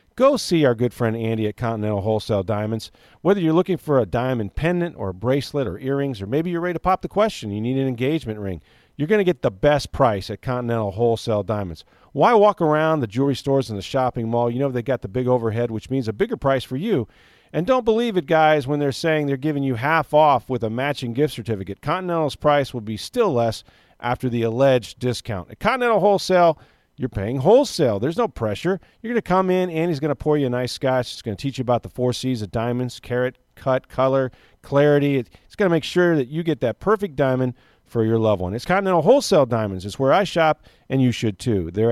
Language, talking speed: English, 235 wpm